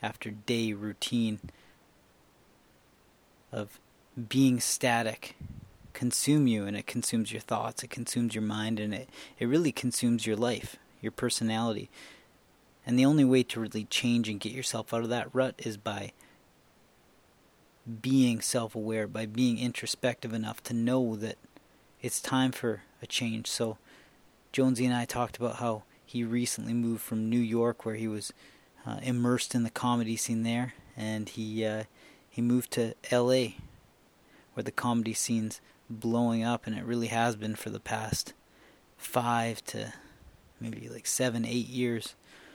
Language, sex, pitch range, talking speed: English, male, 110-120 Hz, 150 wpm